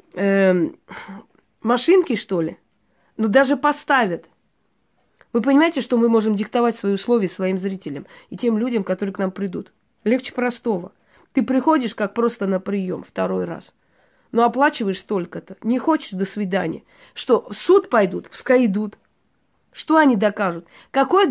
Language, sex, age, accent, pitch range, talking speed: Russian, female, 20-39, native, 200-260 Hz, 145 wpm